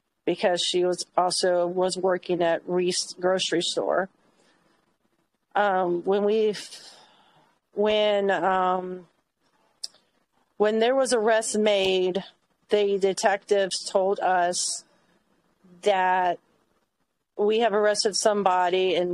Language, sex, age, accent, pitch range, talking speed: English, female, 40-59, American, 180-205 Hz, 95 wpm